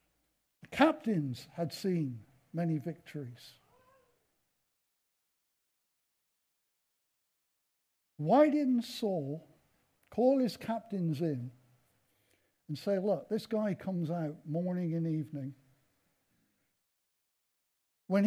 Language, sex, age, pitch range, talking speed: English, male, 60-79, 155-235 Hz, 75 wpm